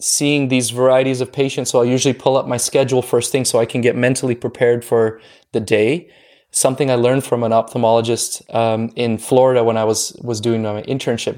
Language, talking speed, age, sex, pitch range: English, 205 wpm, 20-39, male, 115-135 Hz